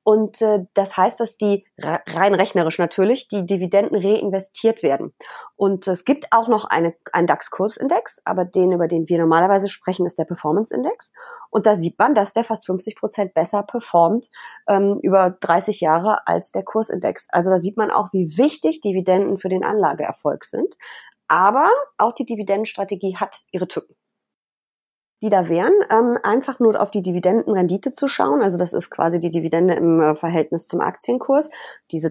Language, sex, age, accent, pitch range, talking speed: German, female, 30-49, German, 180-225 Hz, 165 wpm